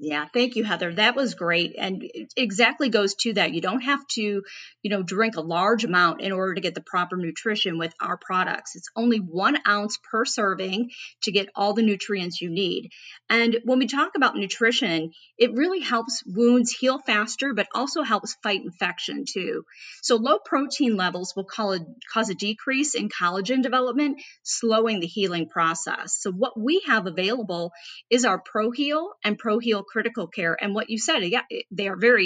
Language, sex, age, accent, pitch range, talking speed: English, female, 30-49, American, 185-235 Hz, 190 wpm